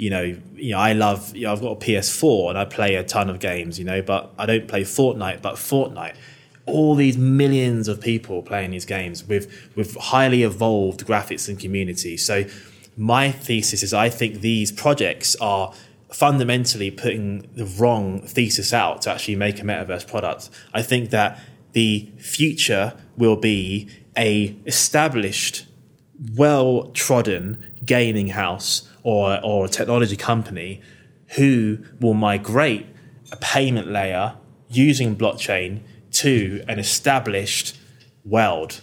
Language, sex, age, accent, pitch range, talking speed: English, male, 20-39, British, 100-125 Hz, 145 wpm